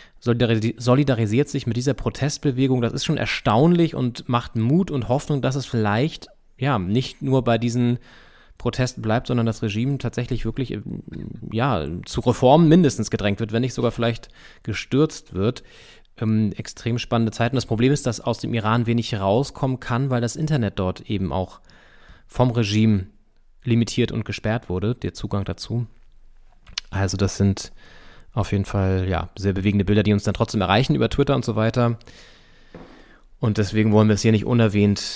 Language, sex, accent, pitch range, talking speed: German, male, German, 105-125 Hz, 165 wpm